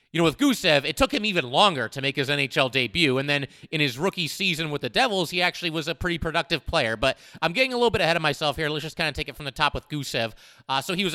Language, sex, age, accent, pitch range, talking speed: English, male, 30-49, American, 140-180 Hz, 295 wpm